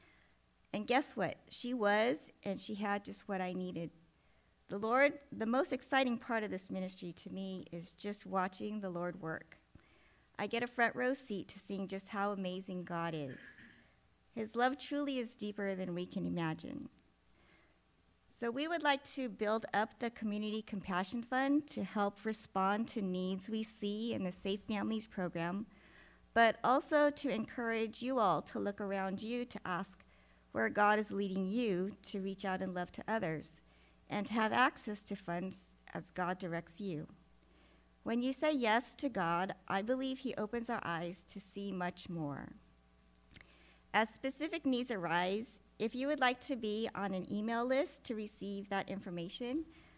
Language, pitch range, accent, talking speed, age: English, 185-235 Hz, American, 170 wpm, 50-69